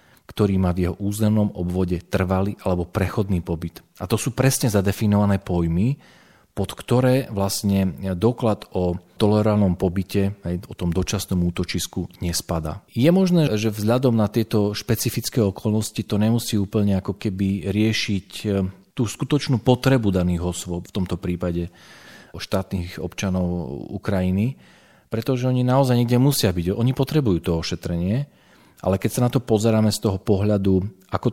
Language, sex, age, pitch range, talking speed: Slovak, male, 40-59, 90-110 Hz, 140 wpm